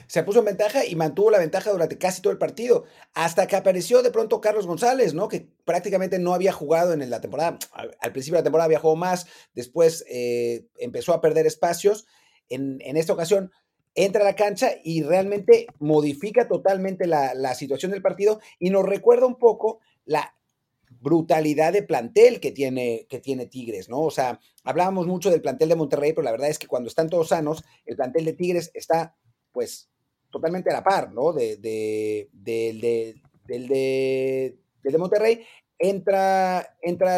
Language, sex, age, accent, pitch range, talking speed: Spanish, male, 40-59, Mexican, 145-205 Hz, 180 wpm